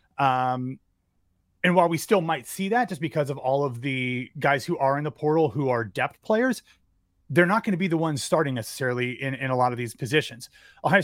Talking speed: 225 wpm